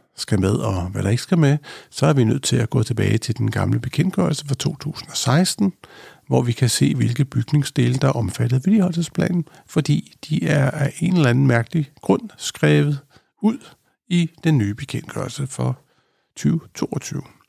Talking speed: 170 wpm